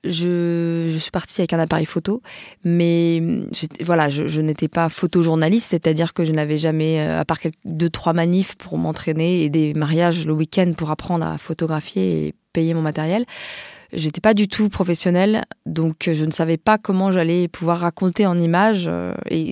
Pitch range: 160-195 Hz